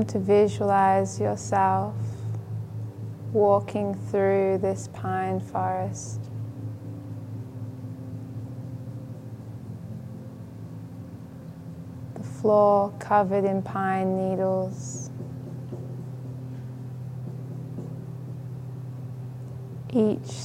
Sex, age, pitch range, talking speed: female, 20-39, 110-125 Hz, 45 wpm